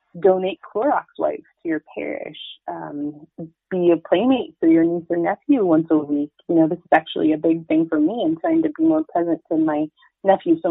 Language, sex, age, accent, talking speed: English, female, 30-49, American, 215 wpm